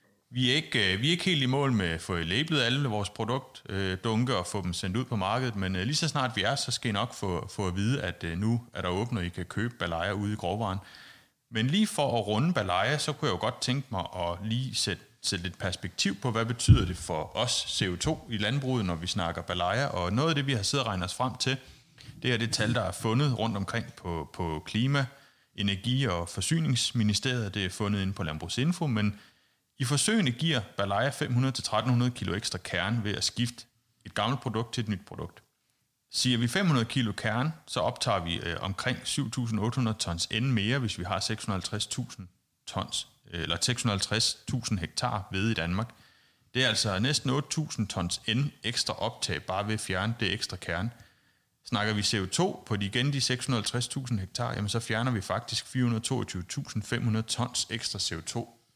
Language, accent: Danish, native